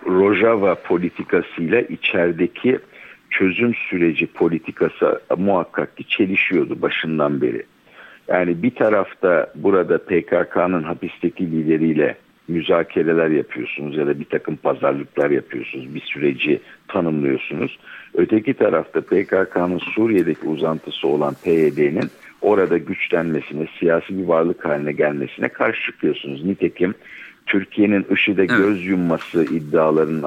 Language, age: Turkish, 60-79